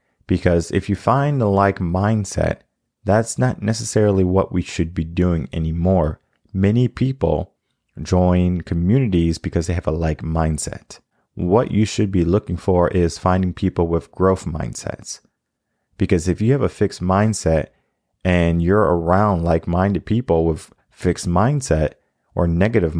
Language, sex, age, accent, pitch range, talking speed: English, male, 30-49, American, 85-105 Hz, 145 wpm